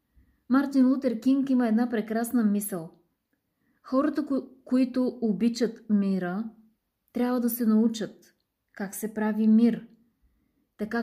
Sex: female